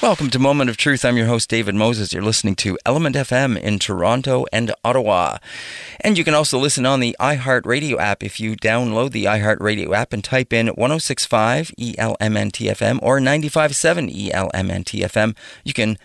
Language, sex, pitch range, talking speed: English, male, 110-140 Hz, 165 wpm